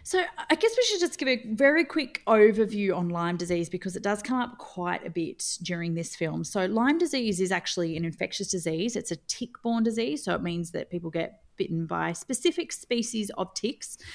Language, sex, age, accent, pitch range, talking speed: English, female, 30-49, Australian, 165-210 Hz, 210 wpm